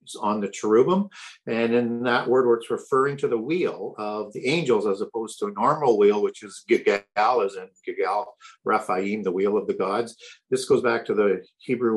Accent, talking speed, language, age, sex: American, 200 wpm, English, 50-69, male